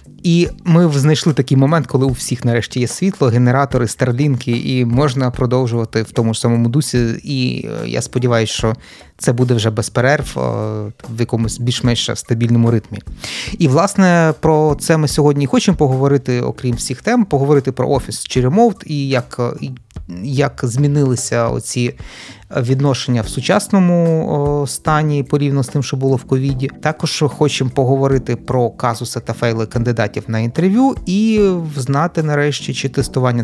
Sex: male